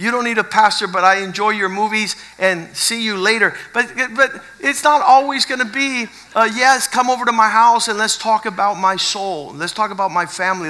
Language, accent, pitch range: English, American, 215-275 Hz